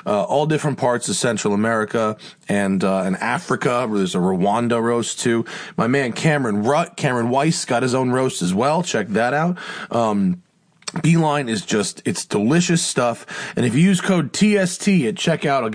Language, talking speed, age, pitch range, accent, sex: English, 180 wpm, 30-49, 115-175 Hz, American, male